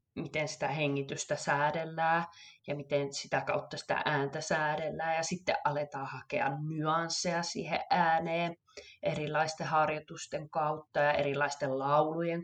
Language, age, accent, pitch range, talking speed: Finnish, 20-39, native, 145-180 Hz, 110 wpm